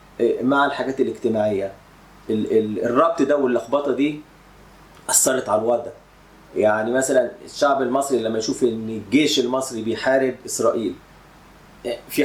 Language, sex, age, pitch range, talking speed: Arabic, male, 30-49, 120-145 Hz, 120 wpm